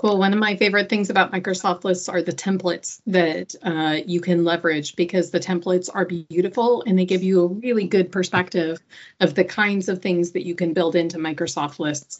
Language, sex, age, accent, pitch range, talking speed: English, female, 30-49, American, 165-190 Hz, 200 wpm